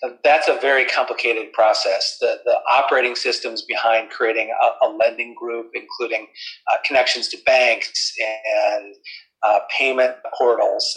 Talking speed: 135 wpm